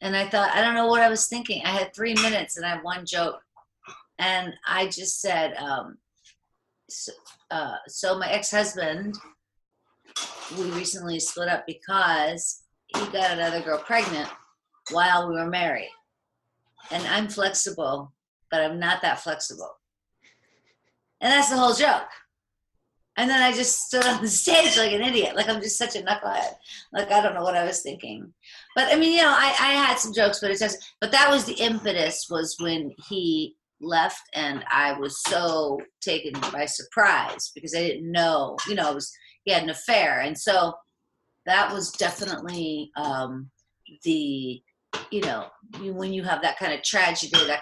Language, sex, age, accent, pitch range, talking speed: English, female, 40-59, American, 165-225 Hz, 175 wpm